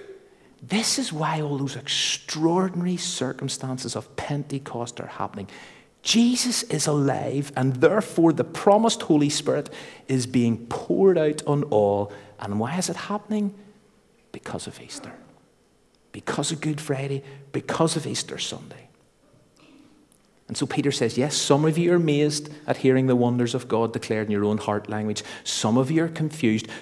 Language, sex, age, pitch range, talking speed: English, male, 50-69, 115-160 Hz, 155 wpm